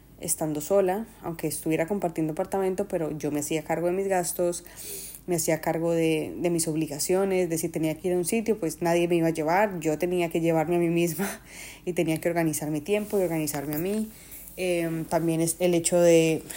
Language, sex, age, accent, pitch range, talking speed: Spanish, female, 20-39, Colombian, 160-190 Hz, 210 wpm